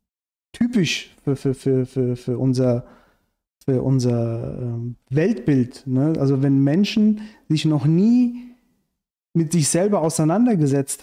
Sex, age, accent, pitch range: male, 40-59, German, 140-165 Hz